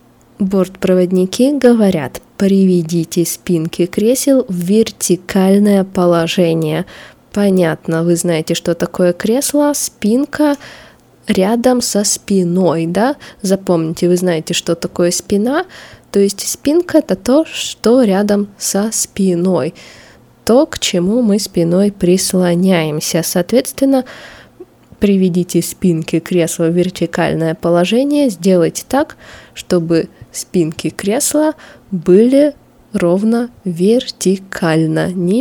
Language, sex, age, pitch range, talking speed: Russian, female, 20-39, 170-210 Hz, 95 wpm